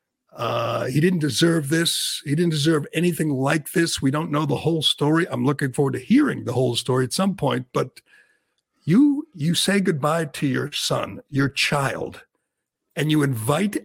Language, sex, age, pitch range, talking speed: English, male, 60-79, 140-190 Hz, 180 wpm